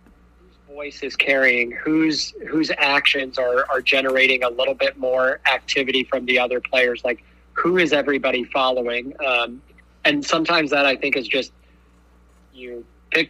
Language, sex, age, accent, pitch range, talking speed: English, male, 20-39, American, 125-140 Hz, 145 wpm